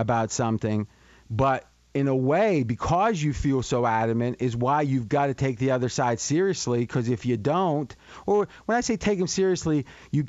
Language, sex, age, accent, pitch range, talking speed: English, male, 30-49, American, 120-155 Hz, 190 wpm